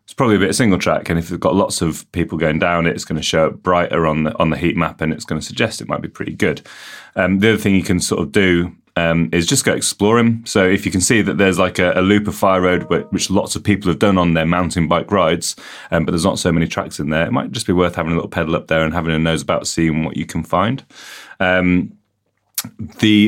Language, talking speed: English, 285 wpm